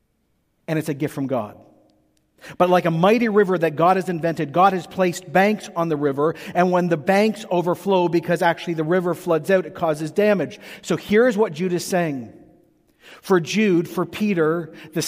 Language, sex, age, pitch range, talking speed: English, male, 50-69, 170-210 Hz, 185 wpm